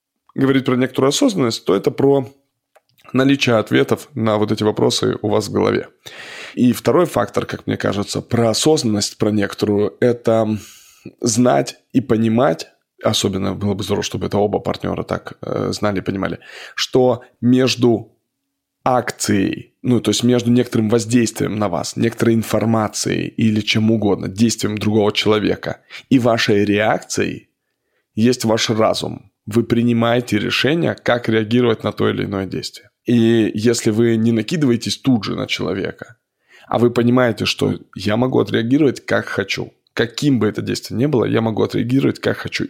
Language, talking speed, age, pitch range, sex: Russian, 150 wpm, 20-39, 105-125 Hz, male